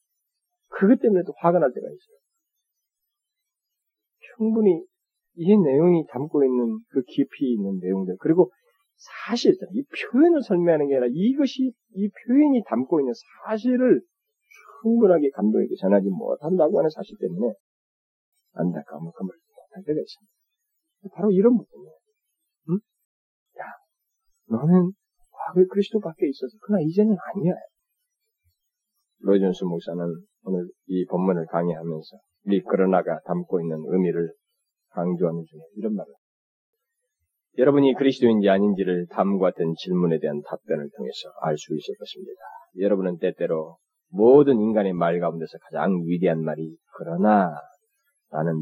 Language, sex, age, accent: Korean, male, 40-59, native